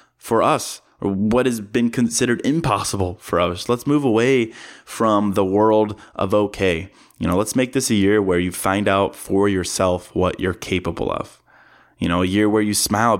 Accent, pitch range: American, 95-110 Hz